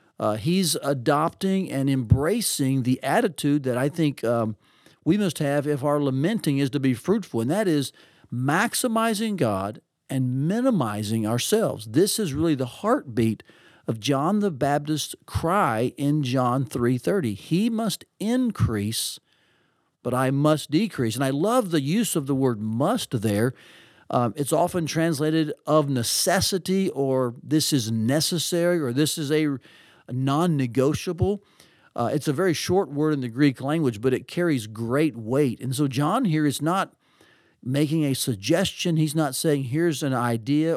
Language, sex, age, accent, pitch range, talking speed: English, male, 50-69, American, 130-175 Hz, 150 wpm